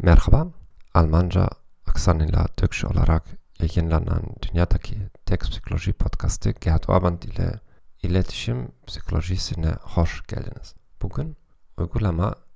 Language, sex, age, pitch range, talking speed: Turkish, male, 40-59, 85-105 Hz, 95 wpm